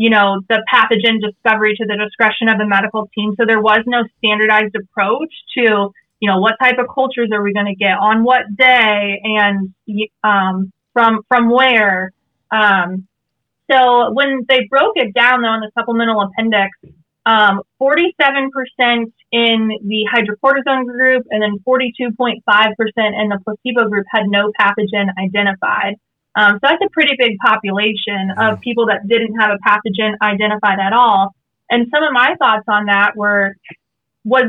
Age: 30-49